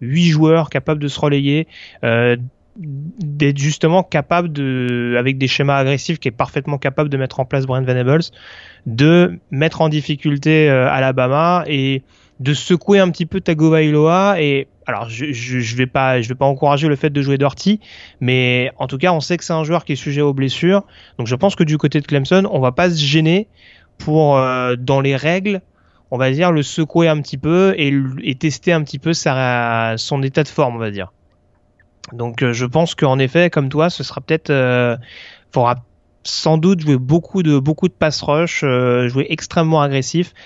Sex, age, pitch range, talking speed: male, 30-49, 130-160 Hz, 200 wpm